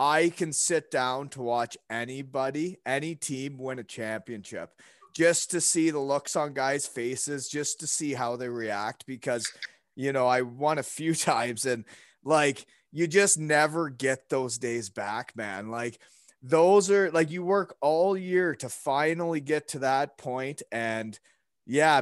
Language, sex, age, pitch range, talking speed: English, male, 30-49, 130-165 Hz, 165 wpm